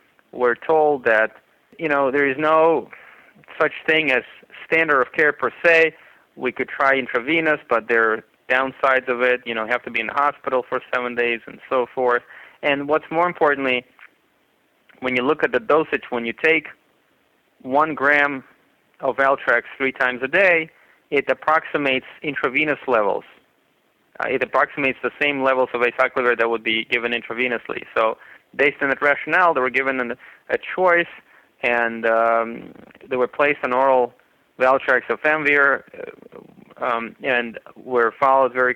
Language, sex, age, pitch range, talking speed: English, male, 20-39, 115-140 Hz, 160 wpm